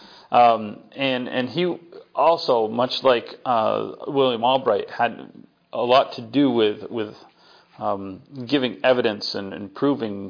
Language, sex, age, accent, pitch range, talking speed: English, male, 40-59, American, 115-145 Hz, 135 wpm